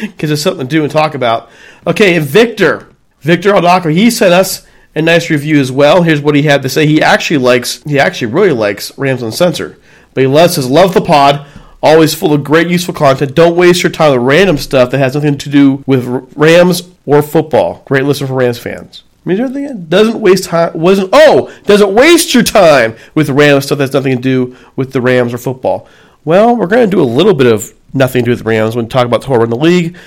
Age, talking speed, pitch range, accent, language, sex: 40-59, 230 wpm, 130-165 Hz, American, English, male